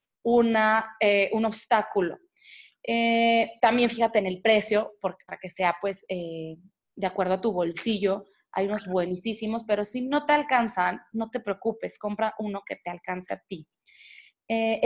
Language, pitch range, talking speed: Spanish, 190-225 Hz, 160 wpm